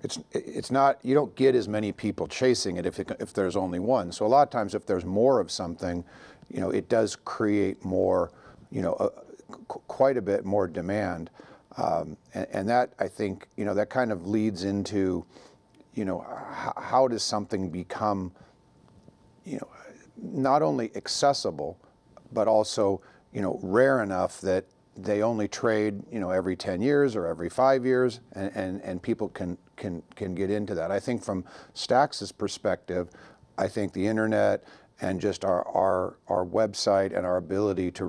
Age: 50-69